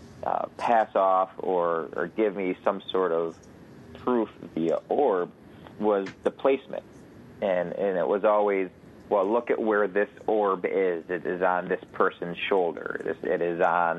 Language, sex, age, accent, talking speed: English, male, 30-49, American, 165 wpm